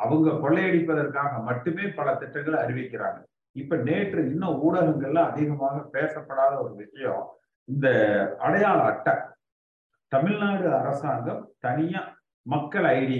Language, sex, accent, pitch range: Tamil, male, native, 125-165 Hz